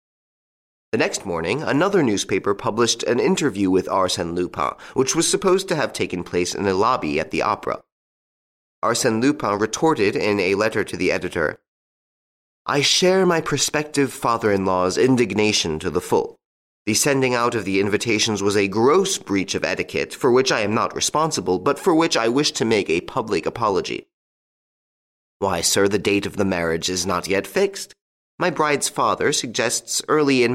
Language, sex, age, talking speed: English, male, 30-49, 170 wpm